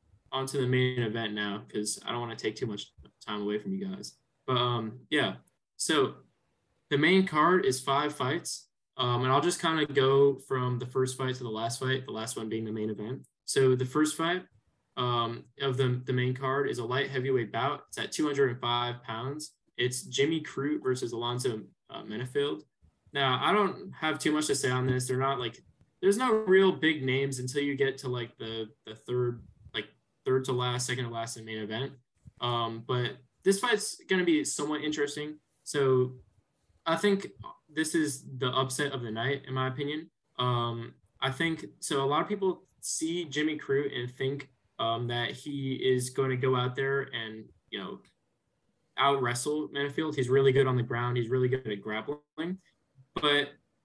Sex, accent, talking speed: male, American, 190 wpm